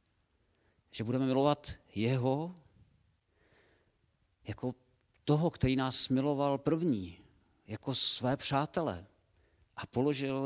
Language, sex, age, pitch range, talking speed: Czech, male, 50-69, 95-130 Hz, 85 wpm